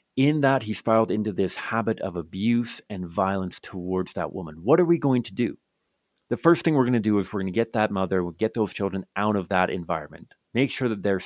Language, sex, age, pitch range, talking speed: English, male, 30-49, 95-115 Hz, 245 wpm